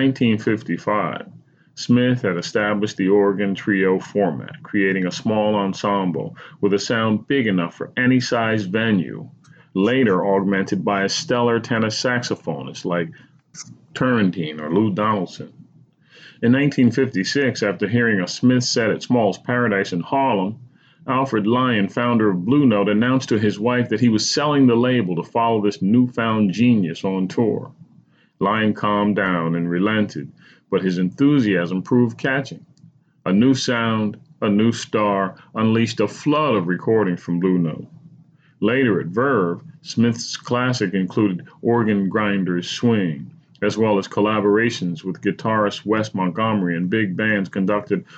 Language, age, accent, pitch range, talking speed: English, 30-49, American, 100-125 Hz, 140 wpm